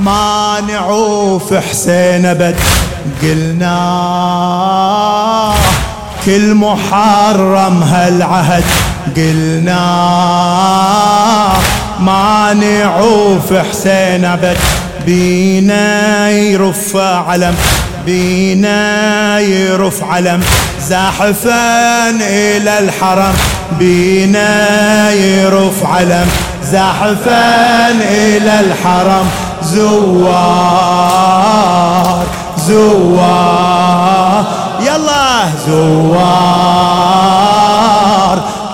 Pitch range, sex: 180-210 Hz, male